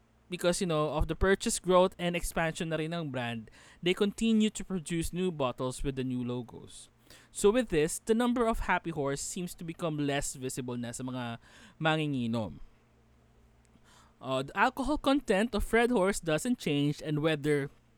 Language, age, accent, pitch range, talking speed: English, 20-39, Filipino, 130-190 Hz, 165 wpm